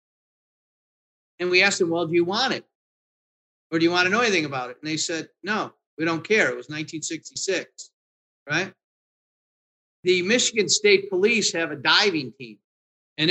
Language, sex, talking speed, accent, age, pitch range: English, male, 170 wpm, American, 50-69, 145-180 Hz